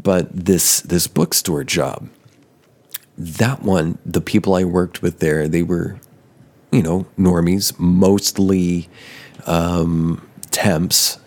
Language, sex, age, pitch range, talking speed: English, male, 40-59, 85-105 Hz, 110 wpm